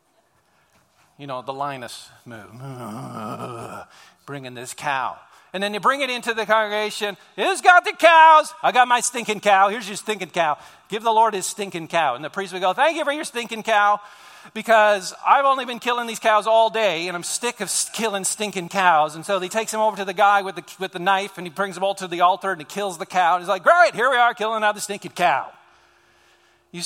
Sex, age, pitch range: male, 50-69, 150-220 Hz